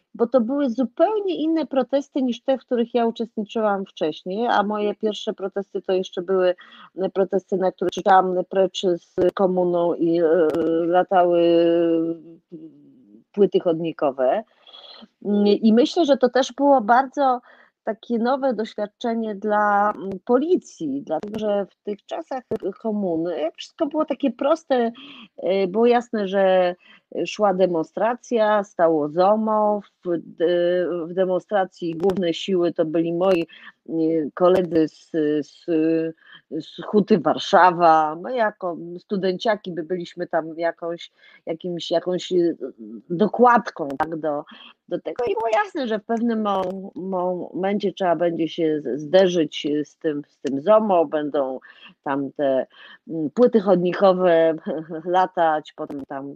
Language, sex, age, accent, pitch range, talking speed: Polish, female, 30-49, native, 170-230 Hz, 115 wpm